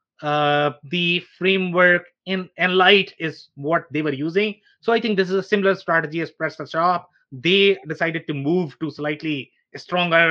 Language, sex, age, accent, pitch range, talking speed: English, male, 30-49, Indian, 145-180 Hz, 170 wpm